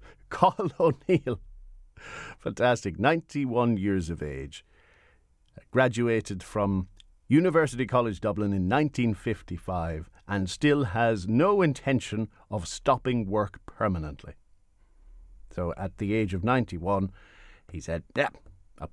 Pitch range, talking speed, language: 85-125 Hz, 105 wpm, English